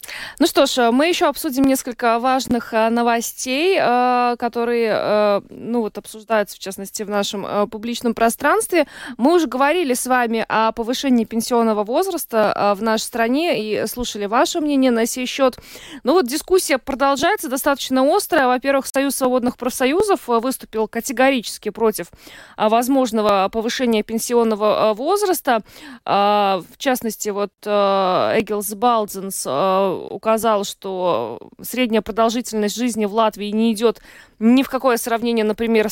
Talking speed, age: 120 wpm, 20-39